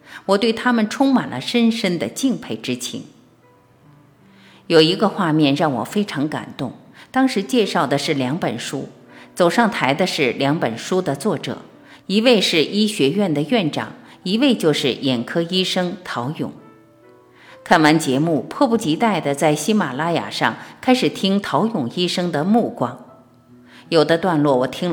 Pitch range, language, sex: 140-215 Hz, Chinese, female